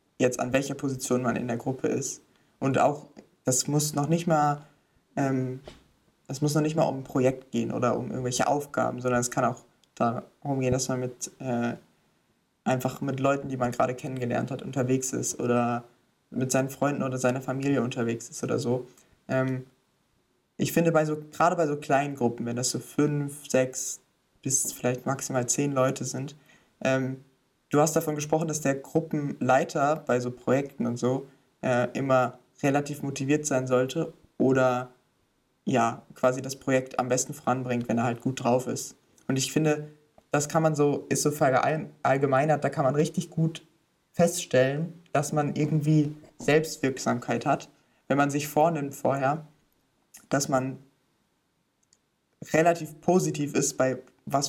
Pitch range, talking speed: 130-150 Hz, 160 wpm